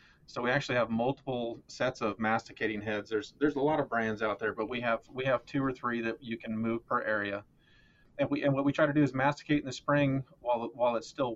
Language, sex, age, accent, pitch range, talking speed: English, male, 30-49, American, 110-130 Hz, 255 wpm